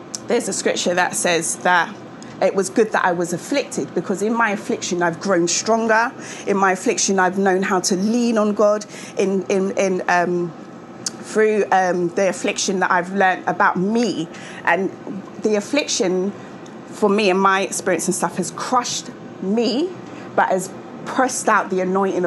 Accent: British